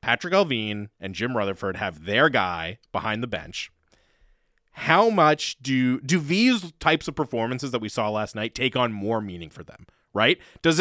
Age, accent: 30-49, American